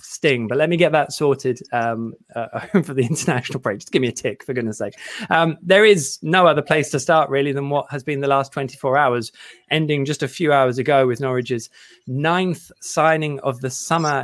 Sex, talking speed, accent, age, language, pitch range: male, 215 wpm, British, 20-39, English, 130-160 Hz